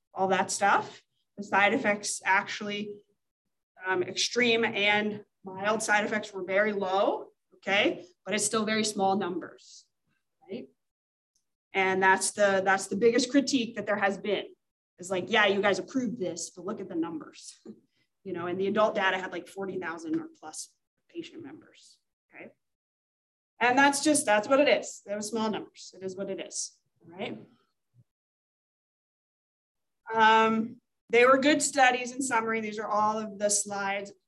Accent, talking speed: American, 160 wpm